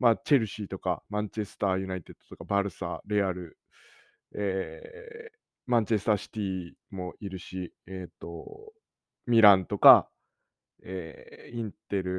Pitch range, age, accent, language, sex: 100-160 Hz, 20-39, native, Japanese, male